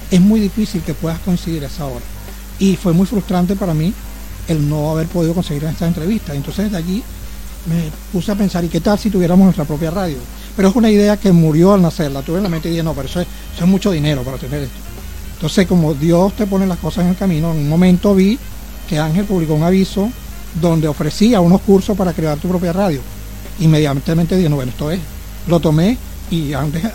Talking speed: 220 wpm